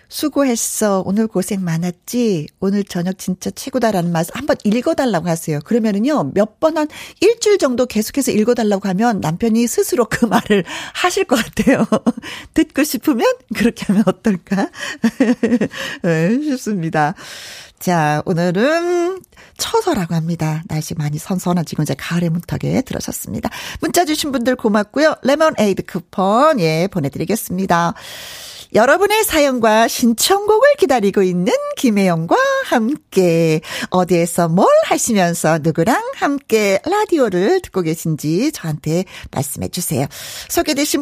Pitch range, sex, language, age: 180-290 Hz, female, Korean, 40-59